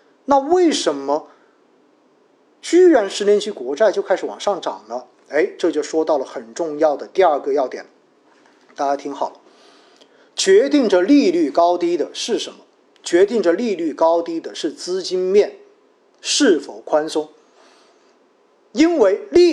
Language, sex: Chinese, male